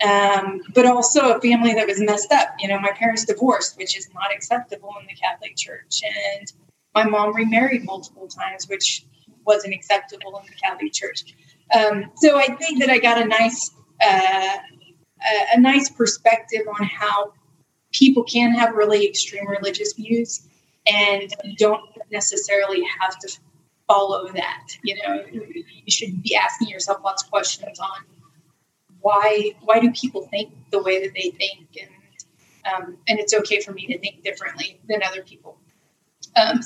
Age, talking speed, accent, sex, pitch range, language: 30-49, 160 wpm, American, female, 195-230 Hz, English